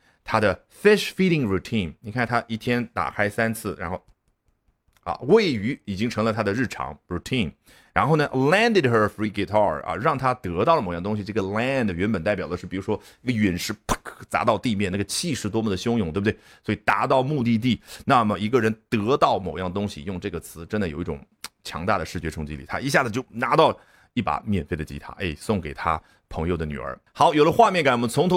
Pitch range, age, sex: 100-130 Hz, 30-49, male